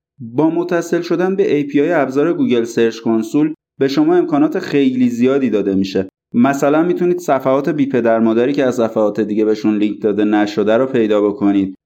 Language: Persian